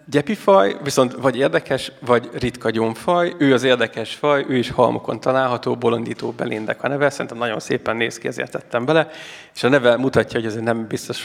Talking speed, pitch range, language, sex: 190 wpm, 120-145 Hz, Hungarian, male